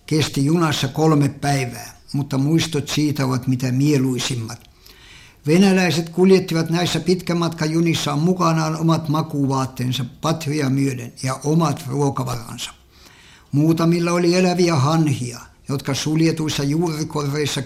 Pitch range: 130-165 Hz